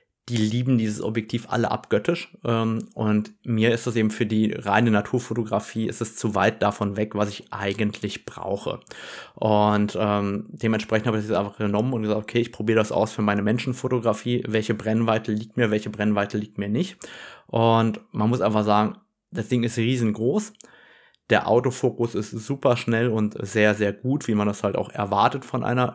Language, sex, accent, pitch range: German, male, German, 105-125 Hz